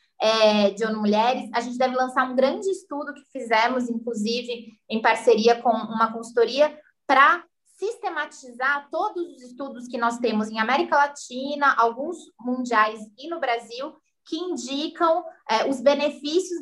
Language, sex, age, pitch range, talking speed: Portuguese, female, 20-39, 225-280 Hz, 135 wpm